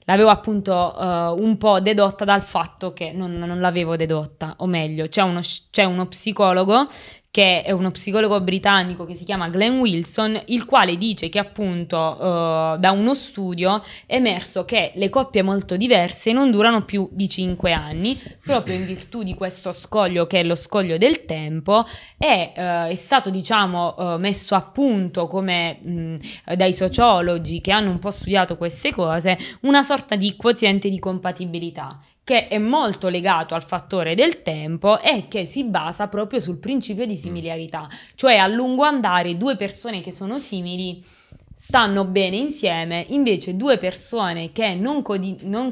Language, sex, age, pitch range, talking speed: Italian, female, 20-39, 175-215 Hz, 165 wpm